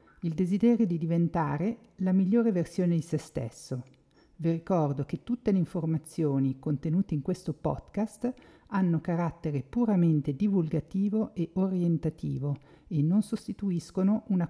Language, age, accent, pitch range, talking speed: Italian, 50-69, native, 155-205 Hz, 120 wpm